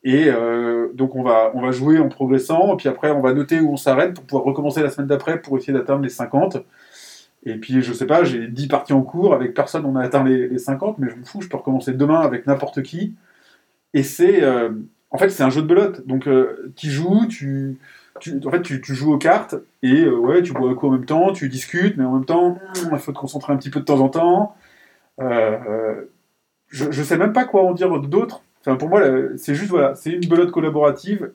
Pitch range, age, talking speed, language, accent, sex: 130-160 Hz, 20-39, 250 wpm, French, French, male